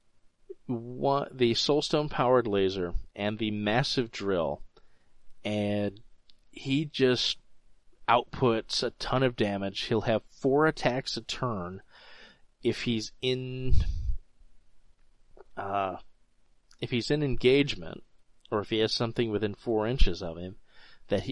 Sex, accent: male, American